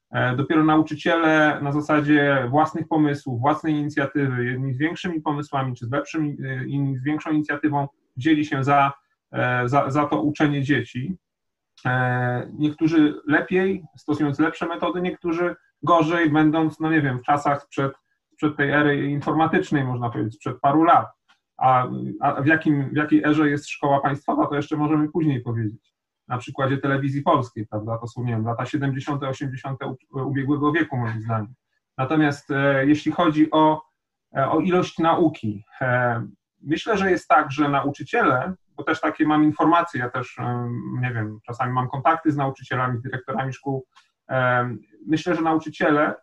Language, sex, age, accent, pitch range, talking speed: Polish, male, 30-49, native, 130-155 Hz, 150 wpm